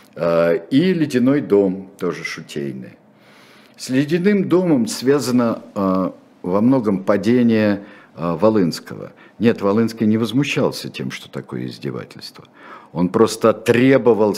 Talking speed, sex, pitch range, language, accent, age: 100 wpm, male, 80-110 Hz, Russian, native, 50-69